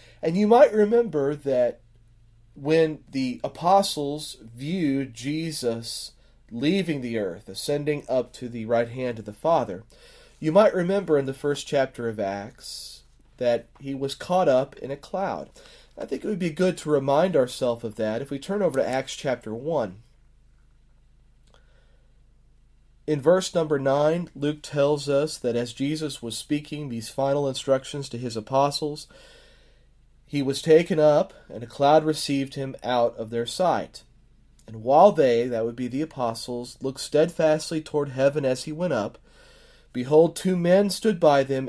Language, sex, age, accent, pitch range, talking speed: English, male, 40-59, American, 125-160 Hz, 160 wpm